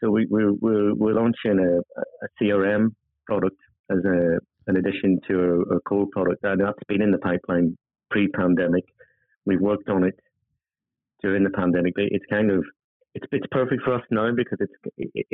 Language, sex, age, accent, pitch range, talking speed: English, male, 30-49, British, 90-100 Hz, 170 wpm